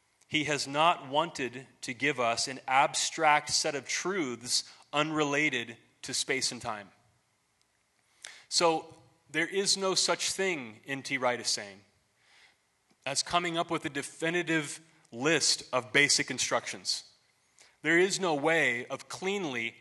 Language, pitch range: English, 135-170 Hz